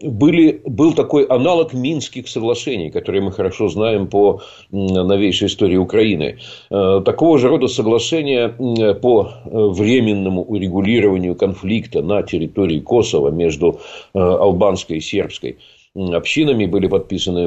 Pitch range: 100-135 Hz